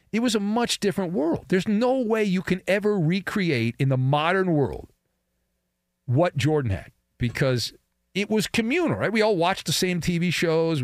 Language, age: English, 40-59